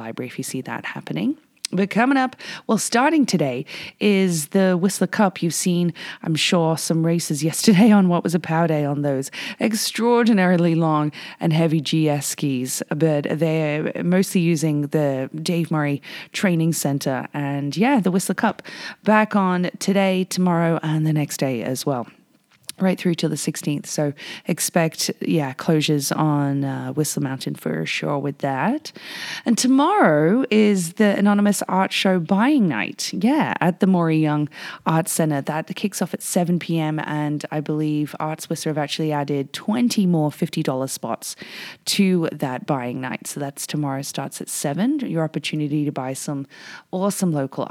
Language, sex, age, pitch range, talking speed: English, female, 30-49, 150-195 Hz, 165 wpm